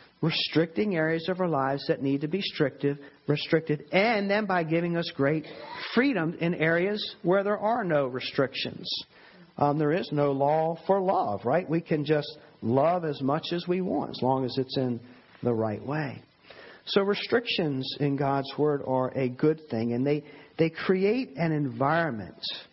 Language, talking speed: English, 170 wpm